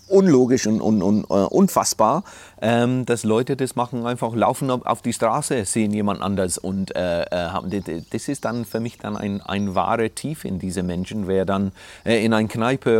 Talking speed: 160 wpm